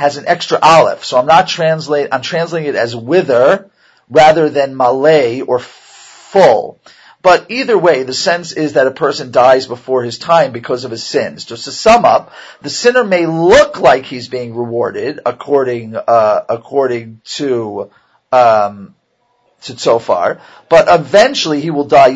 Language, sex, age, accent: English, male, 40-59, American